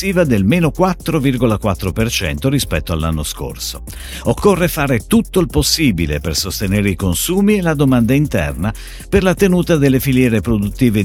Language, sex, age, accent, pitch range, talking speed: Italian, male, 50-69, native, 90-145 Hz, 135 wpm